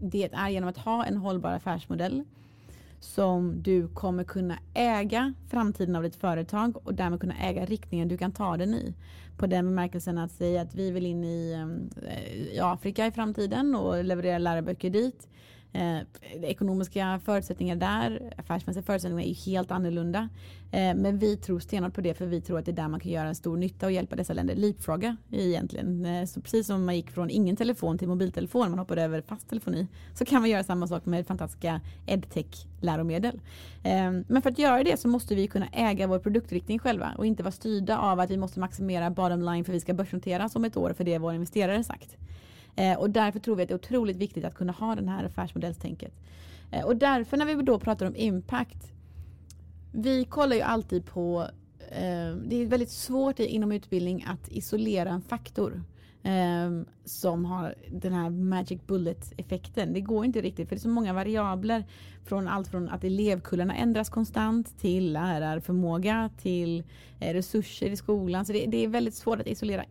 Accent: native